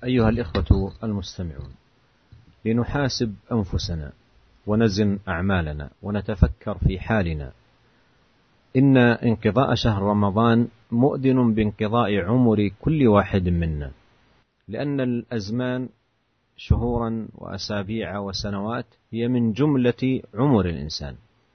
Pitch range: 95-120 Hz